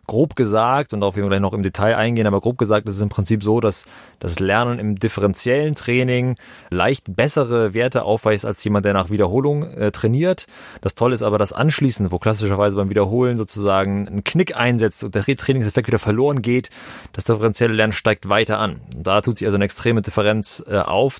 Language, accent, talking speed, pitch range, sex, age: German, German, 200 wpm, 100-125 Hz, male, 30-49